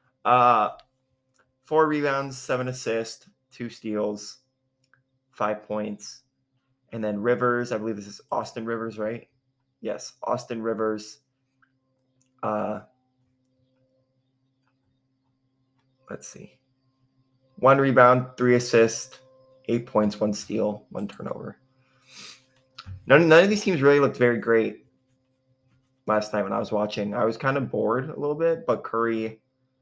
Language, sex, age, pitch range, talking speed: English, male, 20-39, 110-130 Hz, 120 wpm